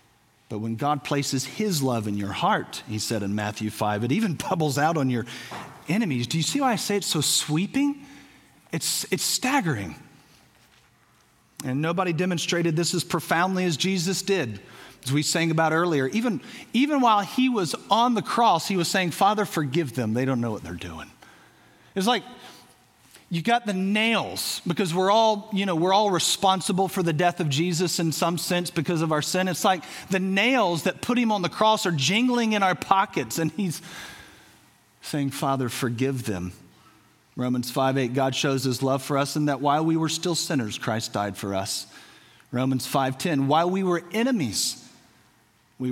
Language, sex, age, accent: English, male, 40-59, American